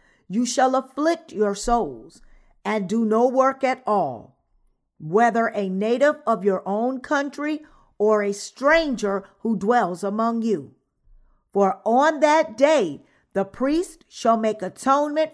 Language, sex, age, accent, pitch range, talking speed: English, female, 50-69, American, 205-295 Hz, 135 wpm